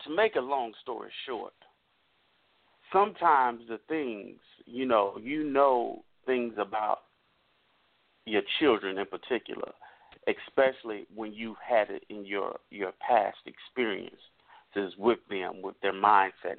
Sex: male